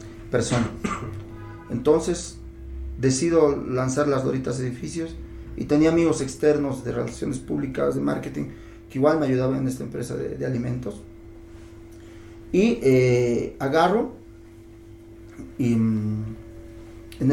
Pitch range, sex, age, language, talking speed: 110-135 Hz, male, 40-59, Spanish, 105 wpm